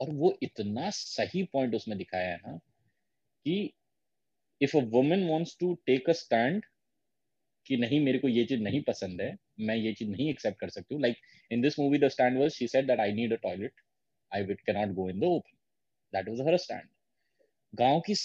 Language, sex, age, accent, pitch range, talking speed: Hindi, male, 30-49, native, 110-160 Hz, 45 wpm